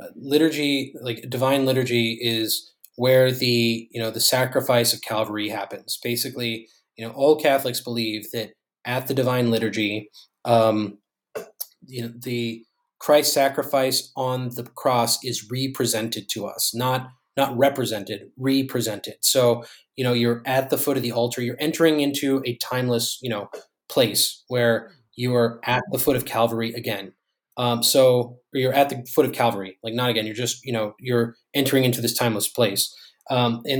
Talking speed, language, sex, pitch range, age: 165 wpm, English, male, 115-135 Hz, 20-39